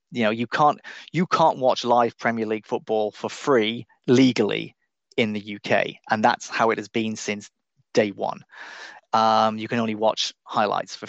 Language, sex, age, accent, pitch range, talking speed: English, male, 30-49, British, 115-145 Hz, 180 wpm